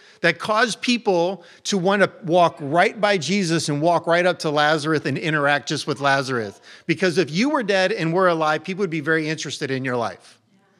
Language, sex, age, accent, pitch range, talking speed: English, male, 40-59, American, 135-180 Hz, 205 wpm